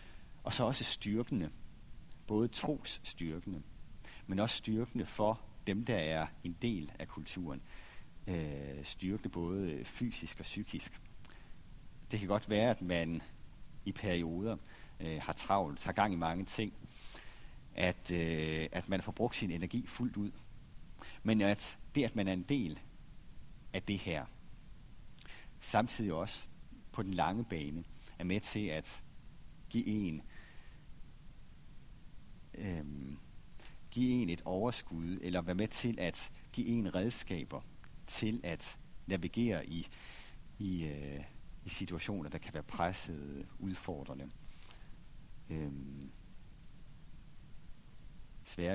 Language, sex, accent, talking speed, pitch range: Danish, male, native, 125 wpm, 80-110 Hz